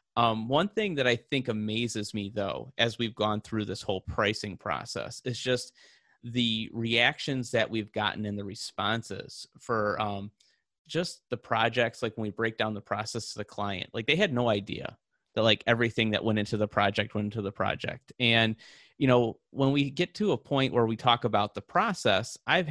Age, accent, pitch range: 30-49, American, 105-125 Hz